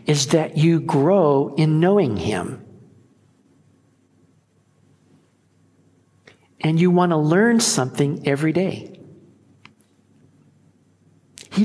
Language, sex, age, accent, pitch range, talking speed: English, male, 60-79, American, 145-205 Hz, 80 wpm